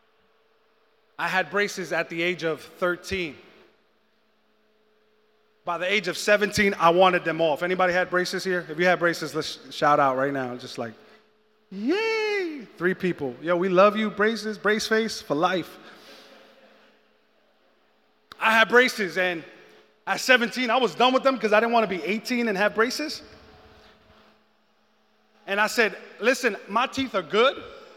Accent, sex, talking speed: American, male, 155 wpm